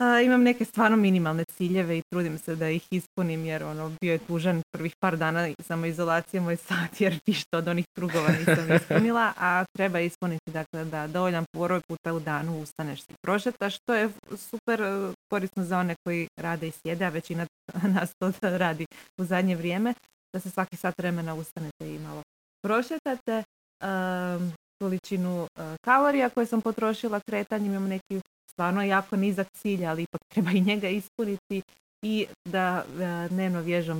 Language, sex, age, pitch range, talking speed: Croatian, female, 20-39, 165-195 Hz, 170 wpm